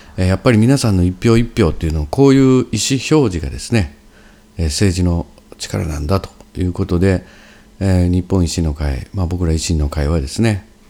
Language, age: Japanese, 50-69